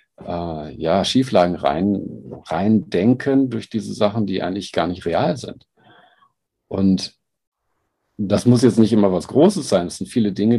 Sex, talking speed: male, 135 wpm